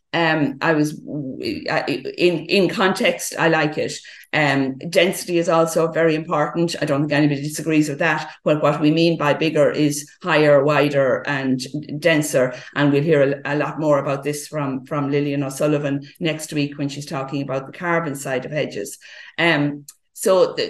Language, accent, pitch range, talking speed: English, Irish, 140-165 Hz, 175 wpm